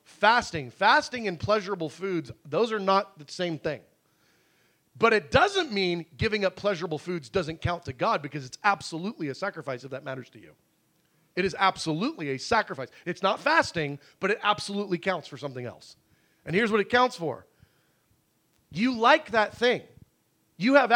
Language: English